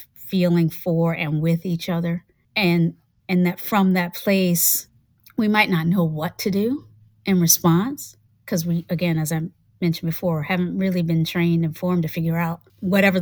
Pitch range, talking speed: 165-190 Hz, 175 wpm